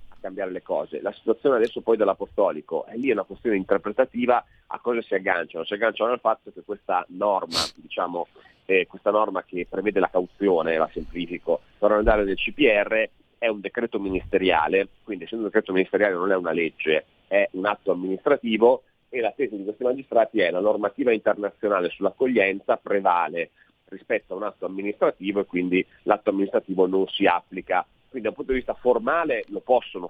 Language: Italian